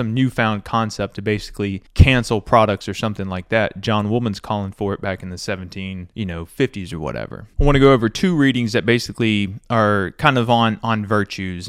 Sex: male